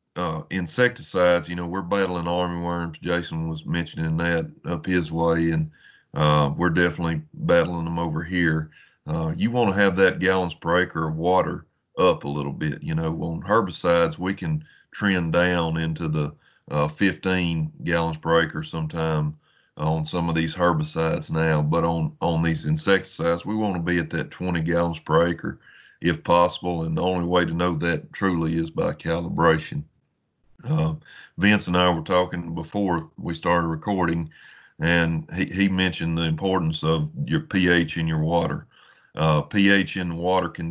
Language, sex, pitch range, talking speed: English, male, 80-90 Hz, 170 wpm